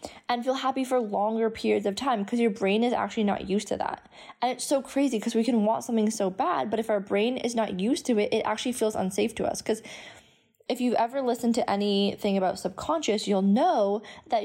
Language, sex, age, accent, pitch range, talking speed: English, female, 20-39, American, 200-245 Hz, 230 wpm